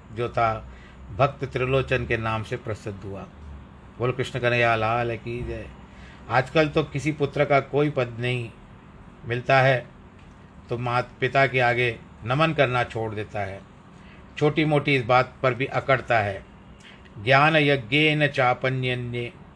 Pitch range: 115-145 Hz